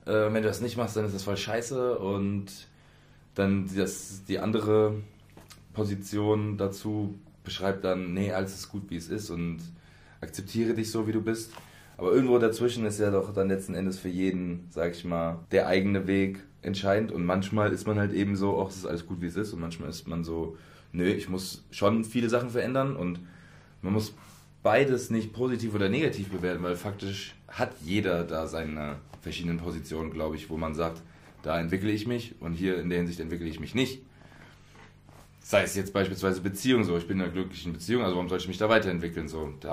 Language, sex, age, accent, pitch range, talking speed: German, male, 20-39, German, 85-105 Hz, 200 wpm